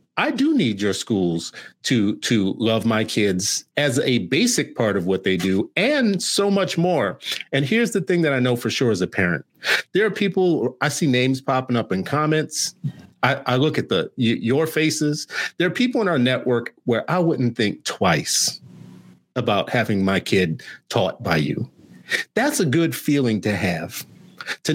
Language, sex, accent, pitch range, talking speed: English, male, American, 105-155 Hz, 185 wpm